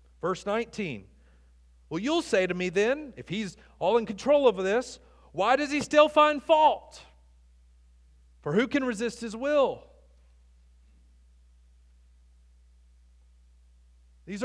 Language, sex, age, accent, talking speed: English, male, 40-59, American, 115 wpm